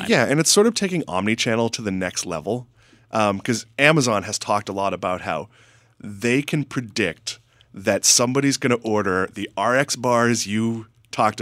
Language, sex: English, male